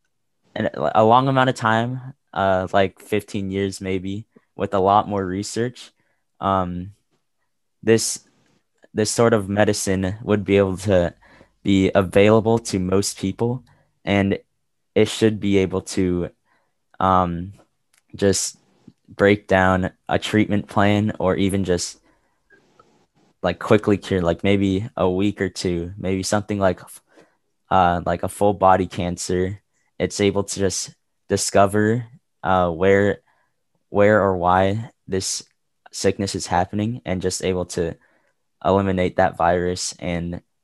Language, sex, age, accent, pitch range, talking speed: English, male, 10-29, American, 90-105 Hz, 125 wpm